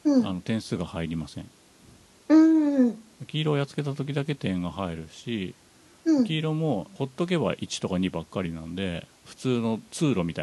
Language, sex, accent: Japanese, male, native